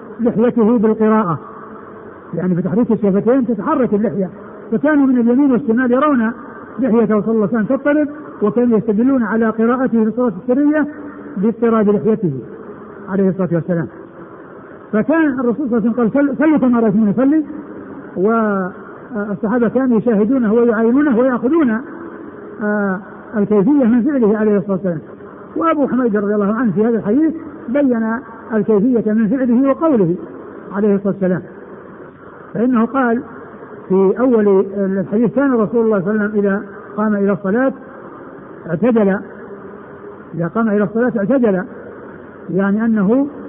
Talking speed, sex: 125 wpm, male